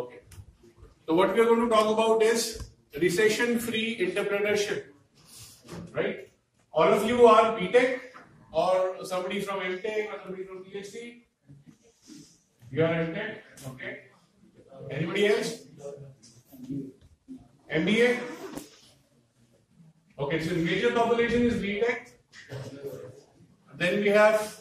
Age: 40-59